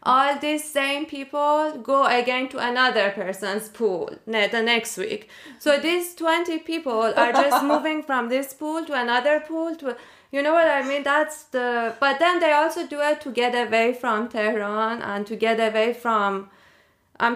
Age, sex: 20-39, female